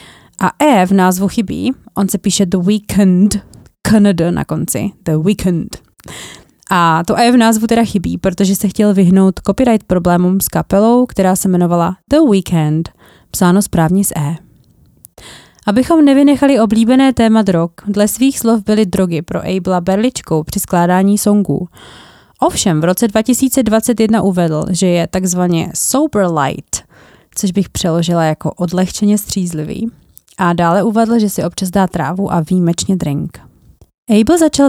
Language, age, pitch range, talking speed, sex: Czech, 20-39, 180-220 Hz, 145 wpm, female